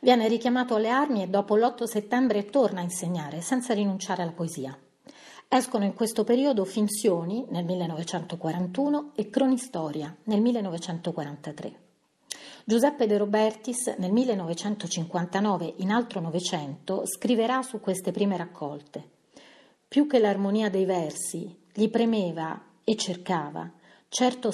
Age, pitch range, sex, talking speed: 40-59, 175-230 Hz, female, 120 wpm